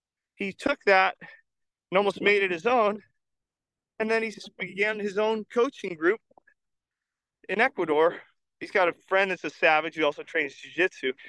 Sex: male